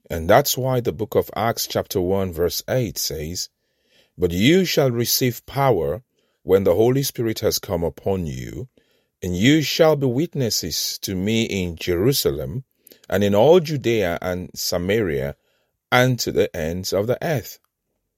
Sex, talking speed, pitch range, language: male, 155 wpm, 95-140 Hz, English